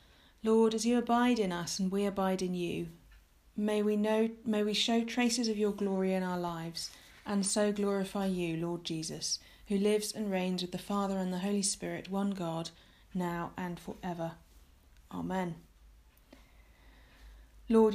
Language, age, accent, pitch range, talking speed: English, 30-49, British, 175-215 Hz, 165 wpm